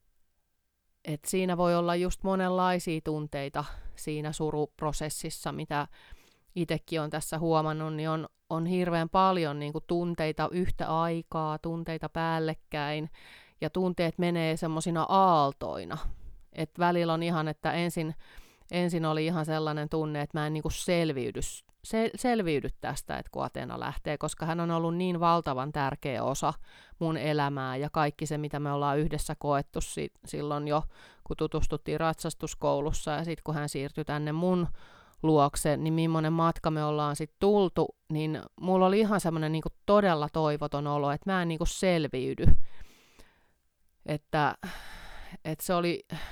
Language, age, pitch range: Finnish, 30-49, 150-170 Hz